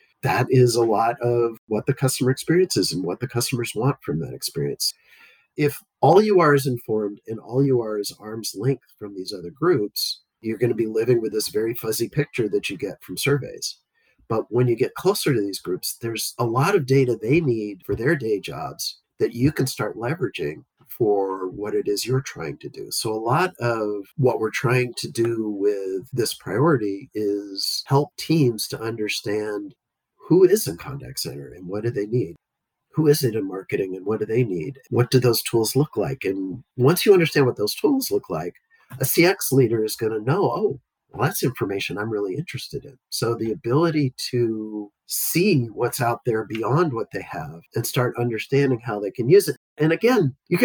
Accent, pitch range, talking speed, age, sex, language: American, 110-145 Hz, 205 wpm, 50-69, male, English